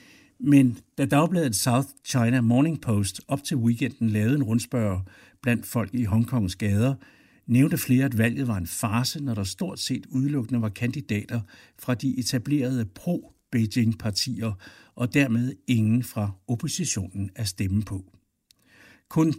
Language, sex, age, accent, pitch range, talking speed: Danish, male, 60-79, native, 105-135 Hz, 140 wpm